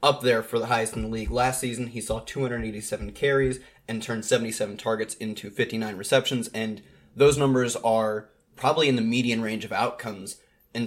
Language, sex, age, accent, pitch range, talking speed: English, male, 20-39, American, 110-130 Hz, 180 wpm